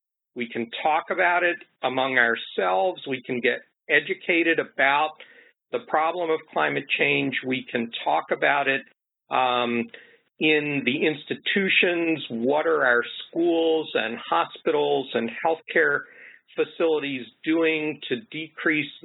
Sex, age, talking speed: male, 50-69, 120 wpm